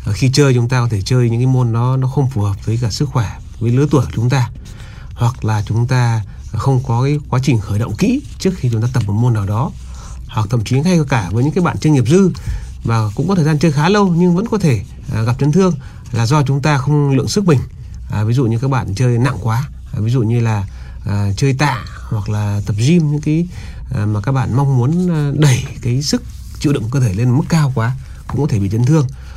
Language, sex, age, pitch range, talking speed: Vietnamese, male, 30-49, 110-145 Hz, 260 wpm